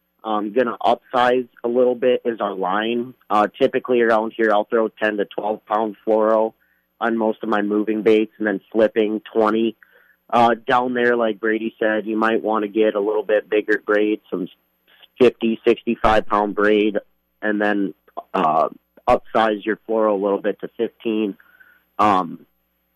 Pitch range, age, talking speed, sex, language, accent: 105-120 Hz, 30-49, 160 wpm, male, English, American